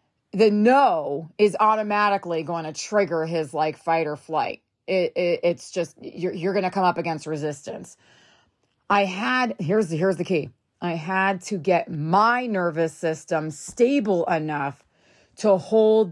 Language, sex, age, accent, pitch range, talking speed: English, female, 30-49, American, 160-190 Hz, 155 wpm